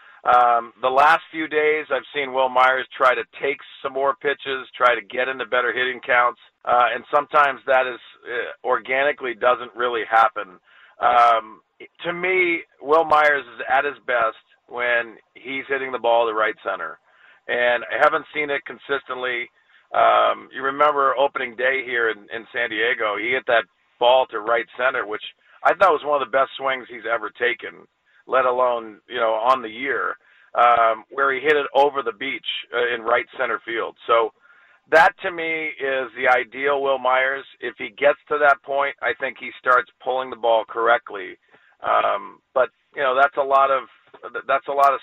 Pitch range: 125-145 Hz